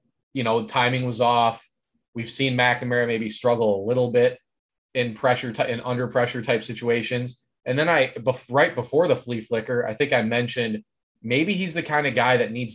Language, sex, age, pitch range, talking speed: English, male, 20-39, 110-130 Hz, 200 wpm